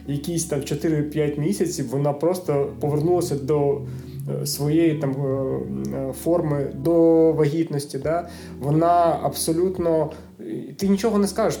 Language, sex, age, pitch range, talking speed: Ukrainian, male, 20-39, 145-175 Hz, 105 wpm